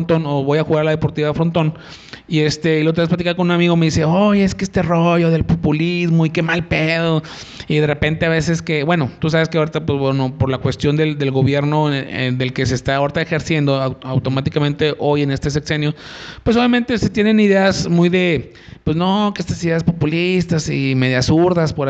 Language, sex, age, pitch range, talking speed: Spanish, male, 30-49, 145-175 Hz, 215 wpm